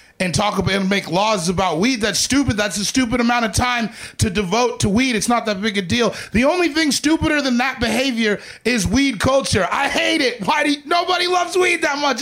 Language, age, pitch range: English, 30-49, 195-315 Hz